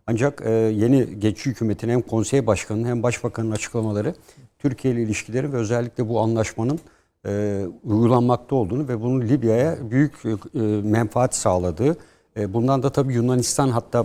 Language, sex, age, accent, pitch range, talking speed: Turkish, male, 60-79, native, 110-130 Hz, 130 wpm